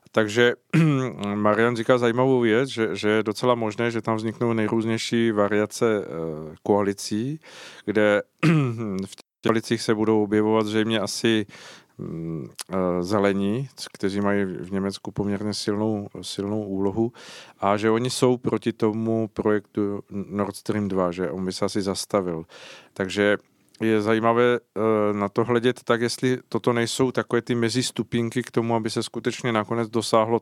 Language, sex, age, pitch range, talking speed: Czech, male, 50-69, 100-115 Hz, 140 wpm